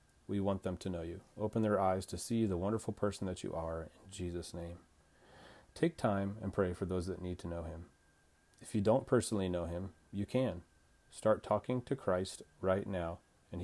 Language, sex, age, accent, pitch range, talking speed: English, male, 30-49, American, 90-105 Hz, 205 wpm